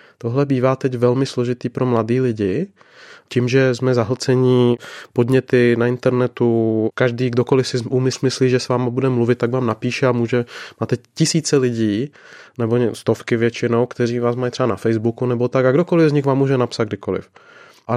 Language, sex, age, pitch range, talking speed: Czech, male, 20-39, 120-135 Hz, 175 wpm